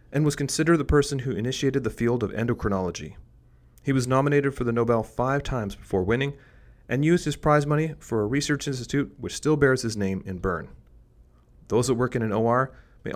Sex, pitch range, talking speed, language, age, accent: male, 95-130 Hz, 200 wpm, English, 30-49, American